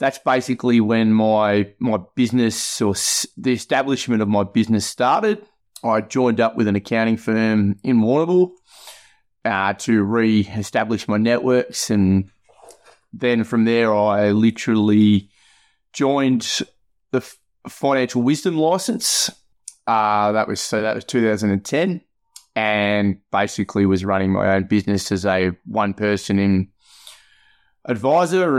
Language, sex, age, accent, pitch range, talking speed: English, male, 30-49, Australian, 105-120 Hz, 120 wpm